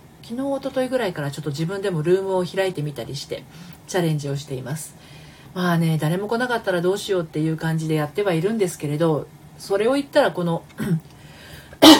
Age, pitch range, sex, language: 40-59, 155-200 Hz, female, Japanese